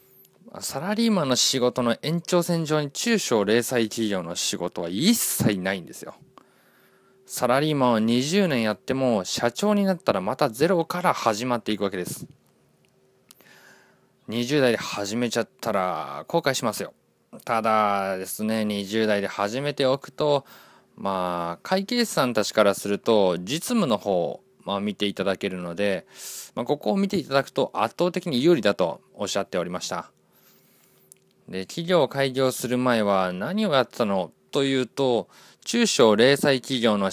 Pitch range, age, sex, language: 100-155 Hz, 20-39, male, Japanese